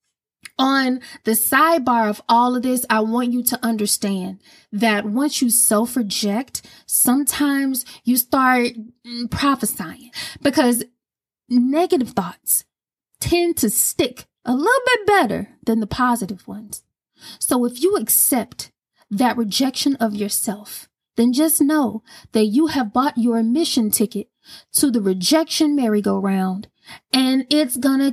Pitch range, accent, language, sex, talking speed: 220-275 Hz, American, English, female, 125 wpm